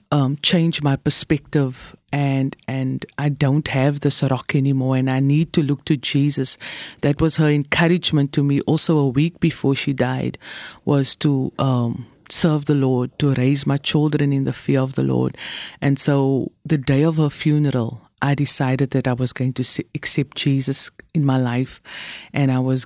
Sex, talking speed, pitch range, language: female, 180 wpm, 135-155 Hz, English